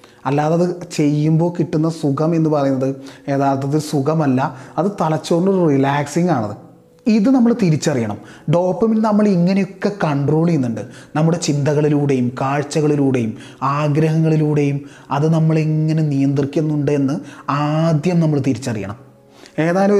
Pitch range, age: 135-175 Hz, 30-49